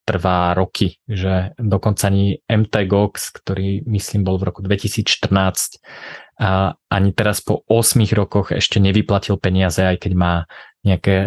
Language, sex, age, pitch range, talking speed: Slovak, male, 20-39, 95-110 Hz, 135 wpm